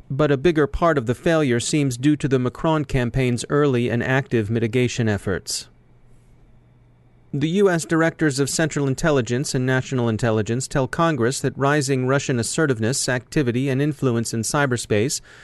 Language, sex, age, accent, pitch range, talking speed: English, male, 30-49, American, 120-145 Hz, 150 wpm